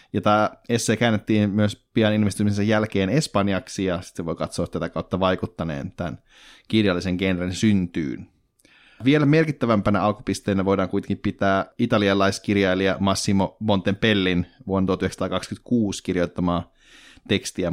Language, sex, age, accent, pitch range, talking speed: Finnish, male, 30-49, native, 95-110 Hz, 115 wpm